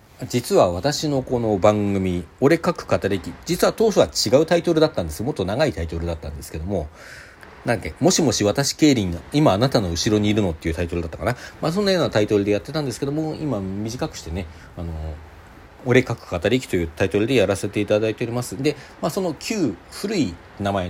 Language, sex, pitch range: Japanese, male, 90-140 Hz